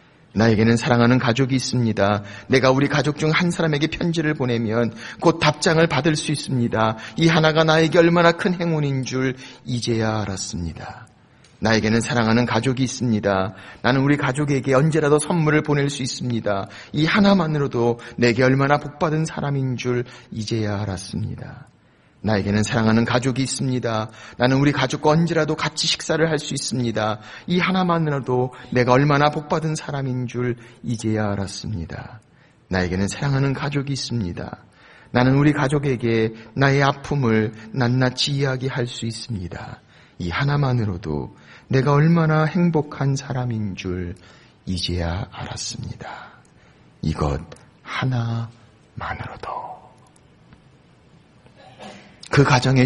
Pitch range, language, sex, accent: 110-145 Hz, Korean, male, native